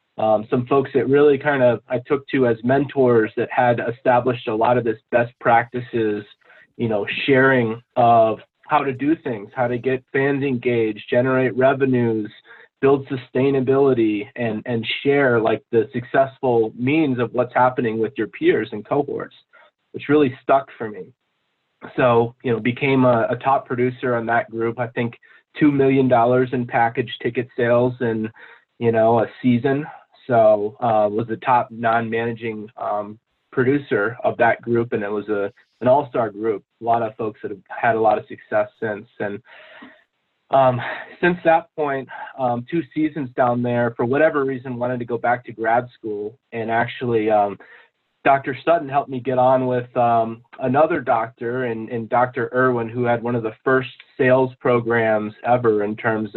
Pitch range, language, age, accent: 115-135 Hz, English, 30-49, American